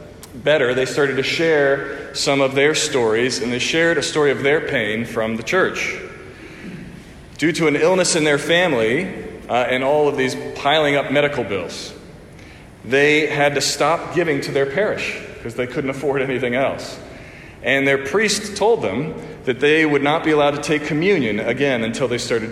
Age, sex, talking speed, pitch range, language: 40-59, male, 180 wpm, 135-170 Hz, English